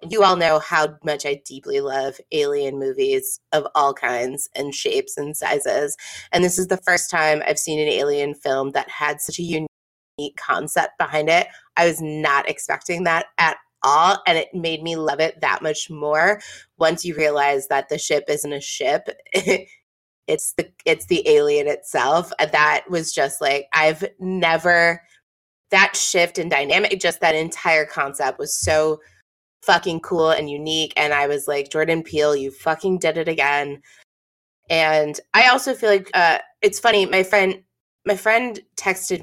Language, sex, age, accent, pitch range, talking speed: English, female, 20-39, American, 150-195 Hz, 170 wpm